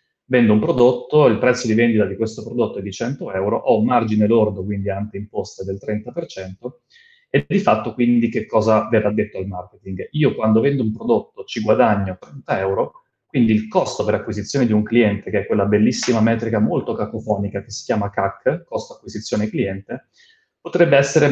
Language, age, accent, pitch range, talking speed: Italian, 30-49, native, 105-130 Hz, 185 wpm